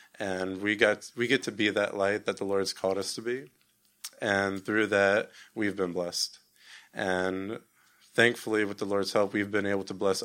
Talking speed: 185 wpm